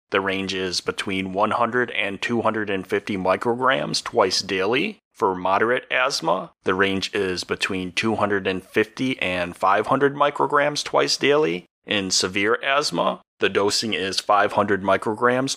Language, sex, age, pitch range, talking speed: English, male, 30-49, 95-120 Hz, 120 wpm